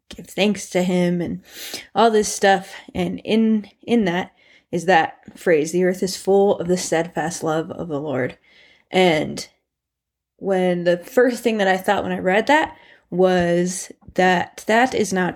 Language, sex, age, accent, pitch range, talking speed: English, female, 20-39, American, 180-215 Hz, 170 wpm